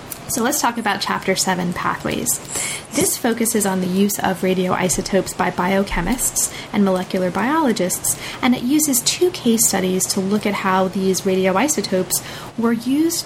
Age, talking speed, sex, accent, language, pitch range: 30-49, 150 wpm, female, American, English, 180-220 Hz